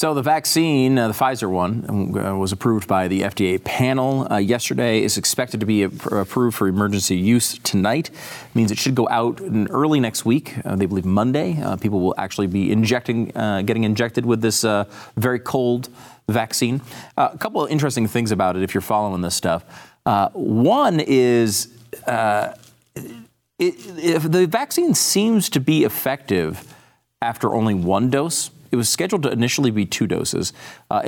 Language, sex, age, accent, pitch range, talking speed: English, male, 30-49, American, 100-130 Hz, 180 wpm